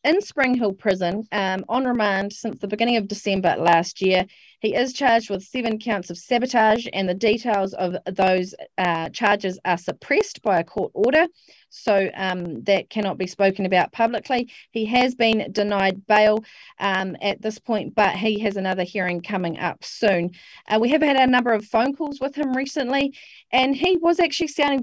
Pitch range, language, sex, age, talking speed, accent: 190-230 Hz, English, female, 30-49, 185 wpm, Australian